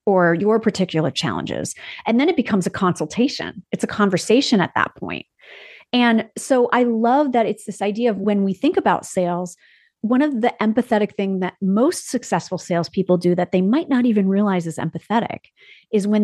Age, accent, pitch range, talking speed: 40-59, American, 180-235 Hz, 185 wpm